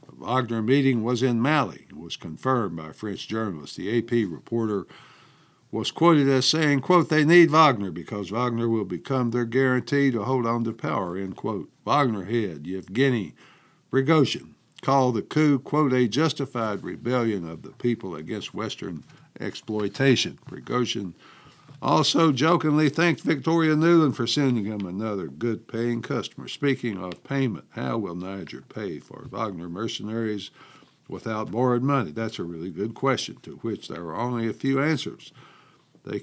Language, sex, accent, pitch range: English, male, American, 105-140 Hz